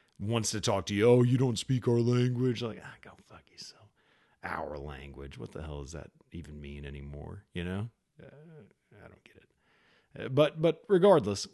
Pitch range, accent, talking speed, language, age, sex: 100-130 Hz, American, 195 wpm, English, 40-59, male